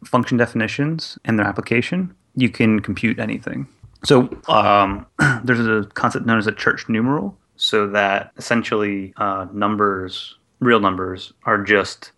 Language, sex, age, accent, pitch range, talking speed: English, male, 30-49, American, 95-115 Hz, 140 wpm